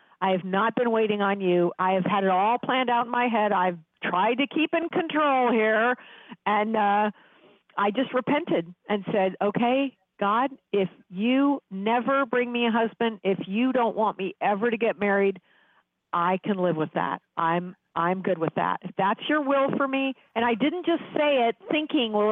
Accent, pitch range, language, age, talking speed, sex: American, 190-235 Hz, English, 50-69, 195 wpm, female